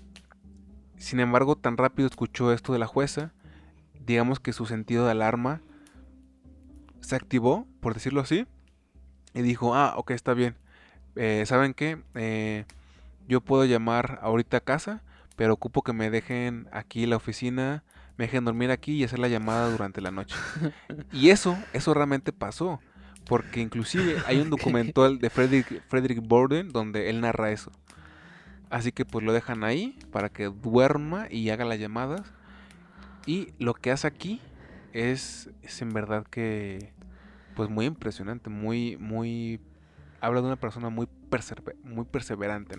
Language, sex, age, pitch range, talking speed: Spanish, male, 20-39, 110-130 Hz, 155 wpm